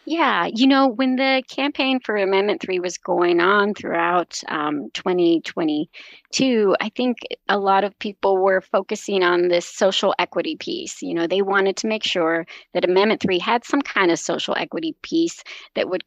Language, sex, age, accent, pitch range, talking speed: English, female, 30-49, American, 175-225 Hz, 175 wpm